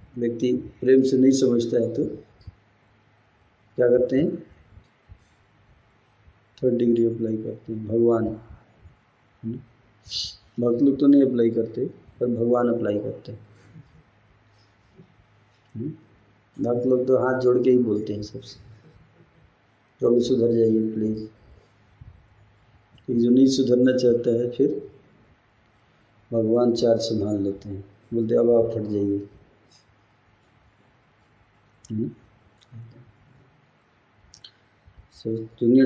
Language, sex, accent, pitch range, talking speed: Hindi, male, native, 105-120 Hz, 100 wpm